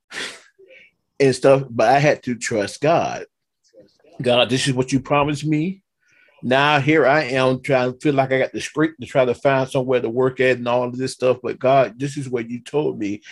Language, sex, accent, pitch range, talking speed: English, male, American, 125-145 Hz, 215 wpm